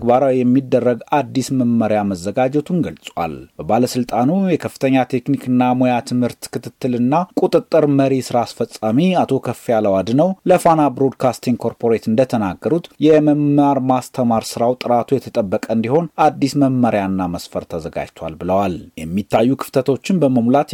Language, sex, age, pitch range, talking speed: Amharic, male, 30-49, 115-140 Hz, 105 wpm